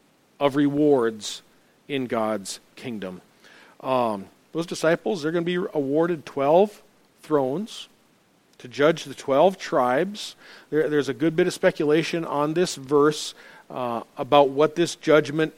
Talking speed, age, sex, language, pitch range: 135 wpm, 50-69, male, English, 140-170 Hz